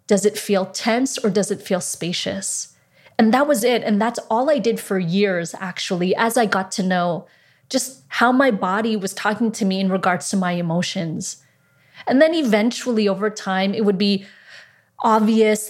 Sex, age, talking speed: female, 20-39, 185 wpm